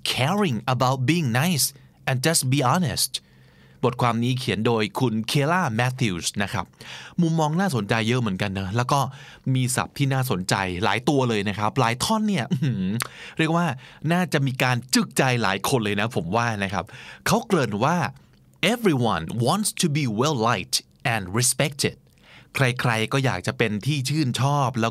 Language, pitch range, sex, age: Thai, 115-150 Hz, male, 20-39